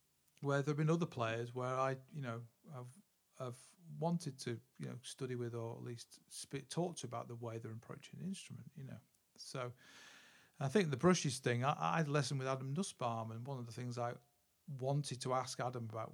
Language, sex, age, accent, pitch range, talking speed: English, male, 40-59, British, 120-140 Hz, 215 wpm